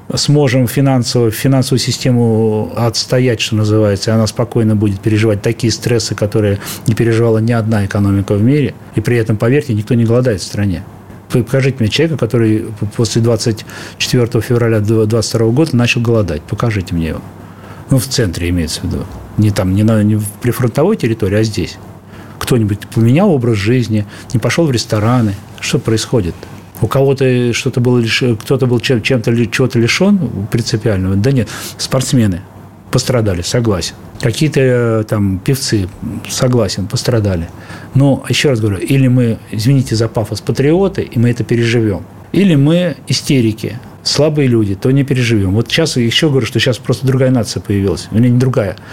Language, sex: Russian, male